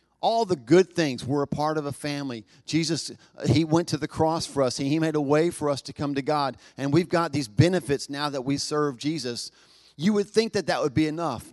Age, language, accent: 40-59, English, American